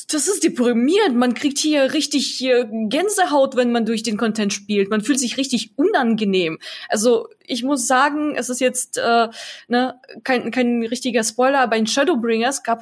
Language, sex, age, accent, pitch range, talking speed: German, female, 20-39, German, 215-265 Hz, 165 wpm